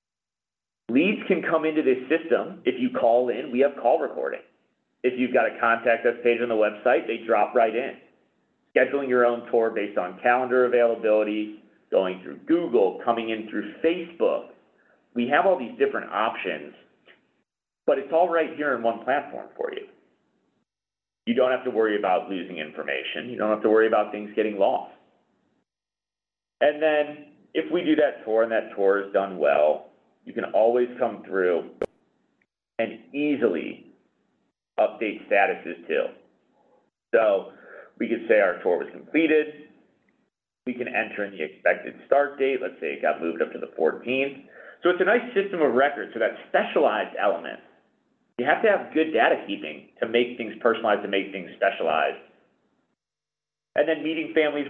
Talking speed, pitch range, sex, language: 170 wpm, 110-155 Hz, male, English